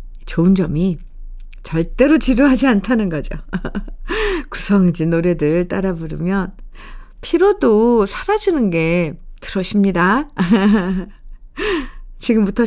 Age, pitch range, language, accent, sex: 50-69, 180-255 Hz, Korean, native, female